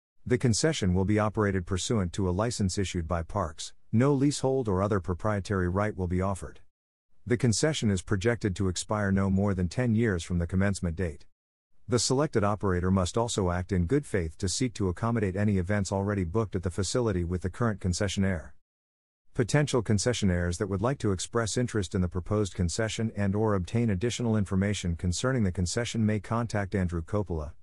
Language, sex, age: English, male, 50-69